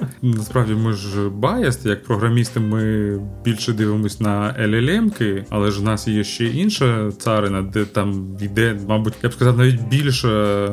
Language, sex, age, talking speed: Ukrainian, male, 20-39, 155 wpm